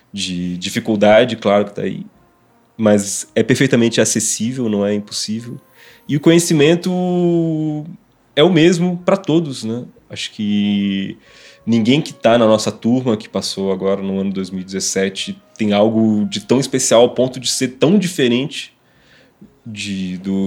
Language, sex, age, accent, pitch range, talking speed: Portuguese, male, 20-39, Brazilian, 100-135 Hz, 145 wpm